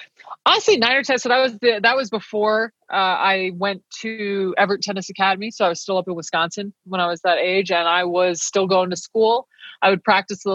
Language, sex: English, female